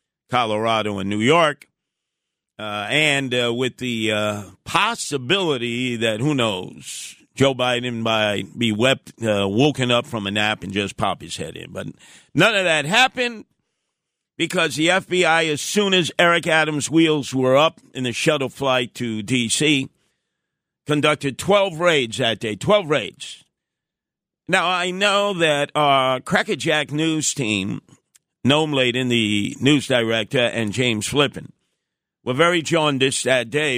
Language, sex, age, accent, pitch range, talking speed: English, male, 50-69, American, 120-160 Hz, 145 wpm